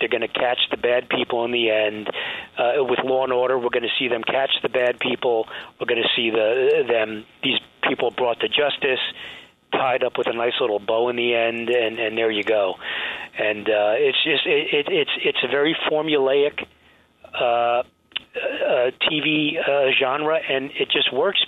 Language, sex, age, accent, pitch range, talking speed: English, male, 40-59, American, 120-160 Hz, 195 wpm